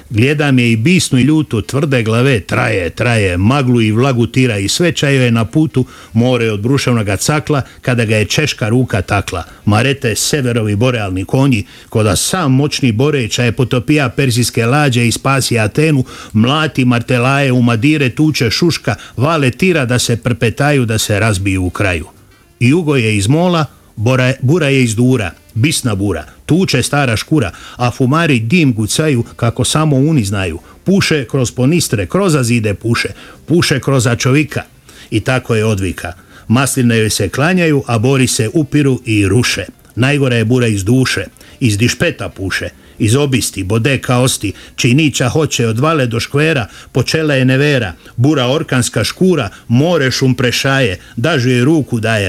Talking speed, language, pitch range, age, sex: 150 wpm, Croatian, 105-140 Hz, 50-69, male